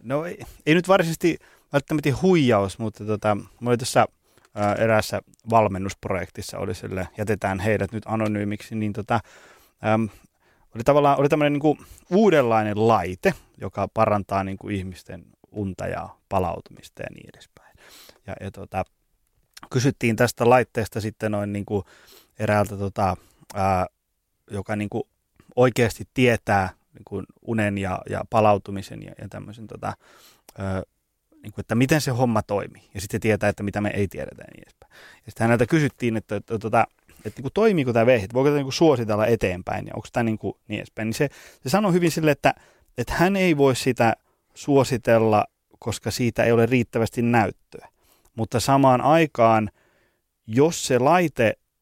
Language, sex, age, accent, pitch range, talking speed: Finnish, male, 20-39, native, 105-125 Hz, 160 wpm